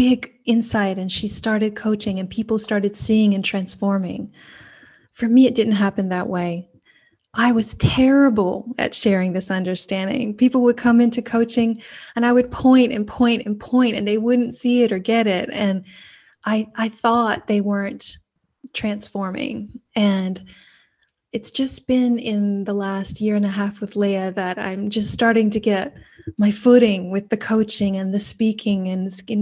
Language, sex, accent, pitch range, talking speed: German, female, American, 200-235 Hz, 170 wpm